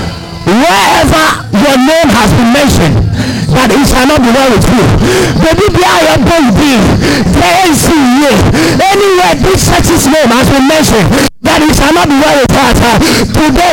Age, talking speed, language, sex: 50-69, 155 wpm, English, male